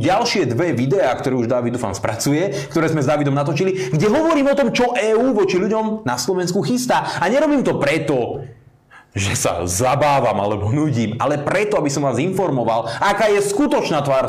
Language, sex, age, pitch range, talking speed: Slovak, male, 30-49, 140-200 Hz, 180 wpm